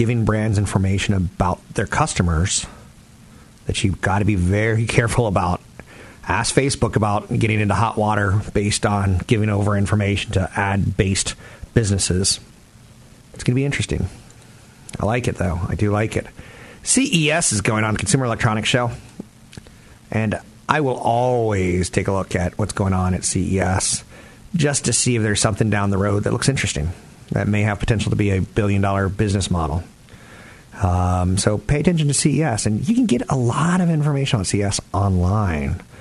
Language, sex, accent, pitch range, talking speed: English, male, American, 95-120 Hz, 170 wpm